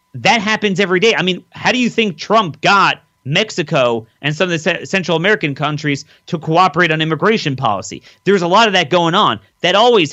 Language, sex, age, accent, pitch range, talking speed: English, male, 30-49, American, 150-215 Hz, 200 wpm